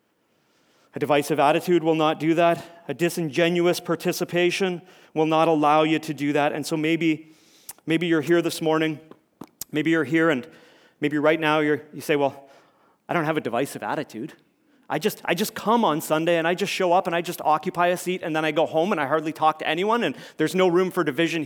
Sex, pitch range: male, 145-170 Hz